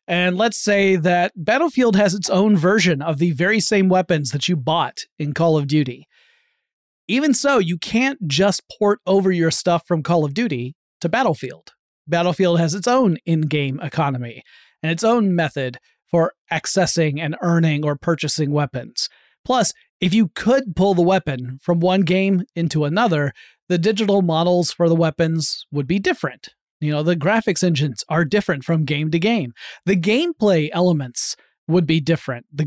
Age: 30-49